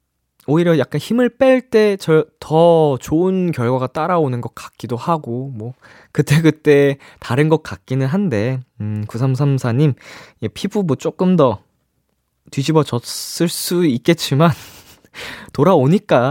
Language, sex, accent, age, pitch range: Korean, male, native, 20-39, 120-170 Hz